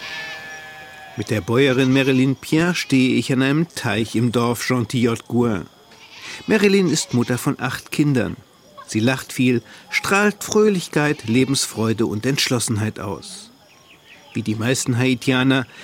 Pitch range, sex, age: 115-150 Hz, male, 50-69